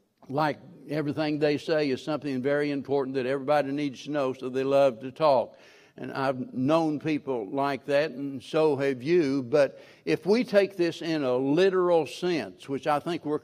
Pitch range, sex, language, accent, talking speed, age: 140-165 Hz, male, English, American, 185 wpm, 60-79